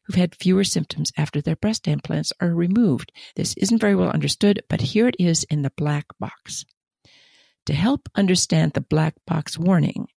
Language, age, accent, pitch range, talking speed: English, 50-69, American, 160-215 Hz, 175 wpm